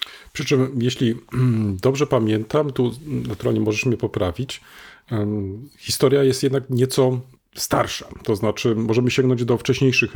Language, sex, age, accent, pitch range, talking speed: Polish, male, 40-59, native, 120-160 Hz, 125 wpm